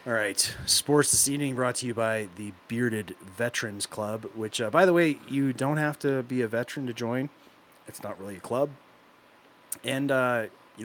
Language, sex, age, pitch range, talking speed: English, male, 30-49, 105-135 Hz, 195 wpm